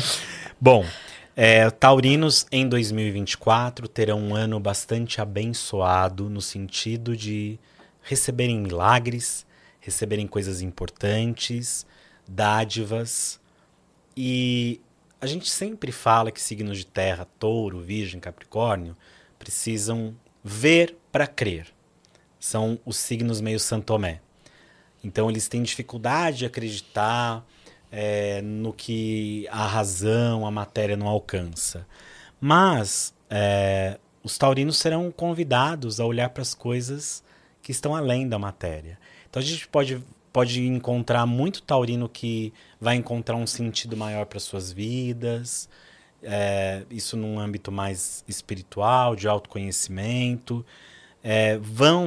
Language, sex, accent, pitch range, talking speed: Portuguese, male, Brazilian, 105-125 Hz, 110 wpm